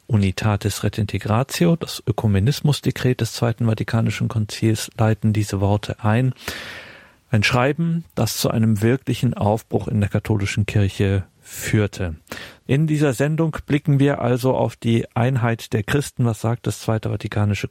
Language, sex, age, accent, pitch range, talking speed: German, male, 40-59, German, 100-120 Hz, 135 wpm